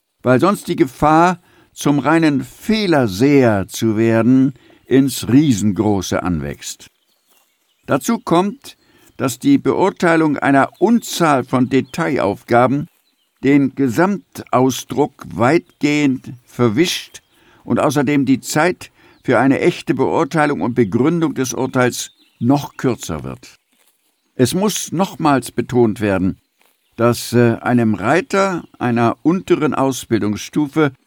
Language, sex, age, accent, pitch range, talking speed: German, male, 60-79, German, 125-165 Hz, 100 wpm